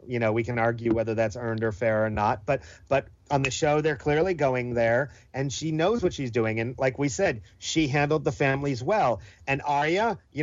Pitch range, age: 120-160 Hz, 40-59